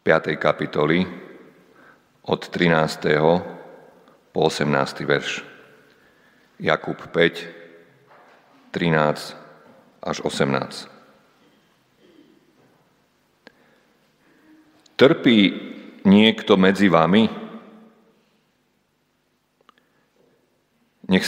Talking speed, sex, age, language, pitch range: 50 wpm, male, 50-69, Slovak, 80-120 Hz